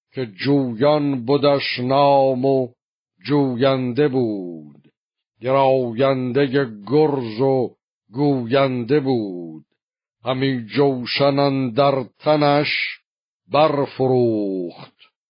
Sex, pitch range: male, 120-140 Hz